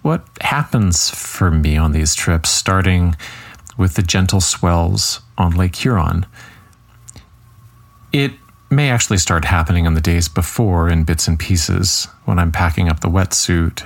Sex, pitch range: male, 85-110 Hz